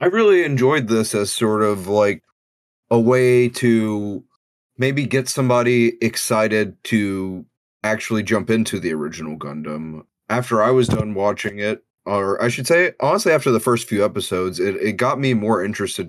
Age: 30-49